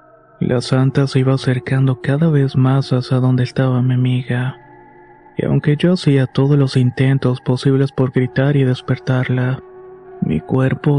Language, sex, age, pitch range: Spanish, male, 30-49, 130-140 Hz